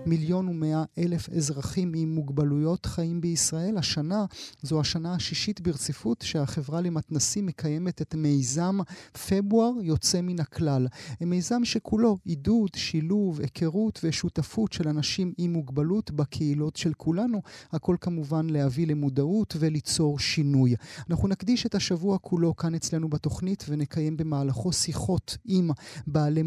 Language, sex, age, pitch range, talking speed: Hebrew, male, 30-49, 150-185 Hz, 120 wpm